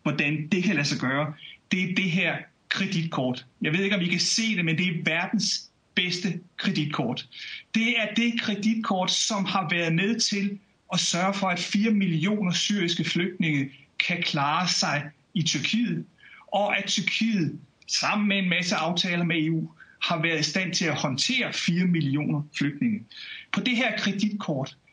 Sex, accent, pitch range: male, native, 165-210 Hz